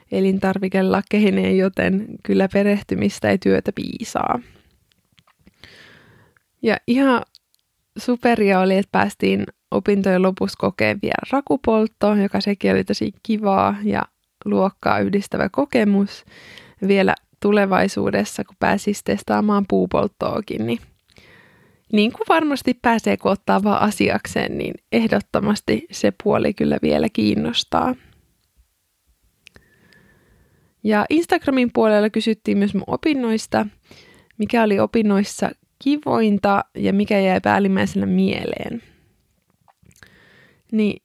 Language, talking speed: Finnish, 95 wpm